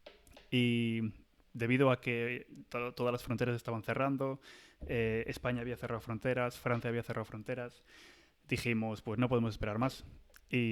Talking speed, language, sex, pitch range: 145 wpm, Spanish, male, 110-130 Hz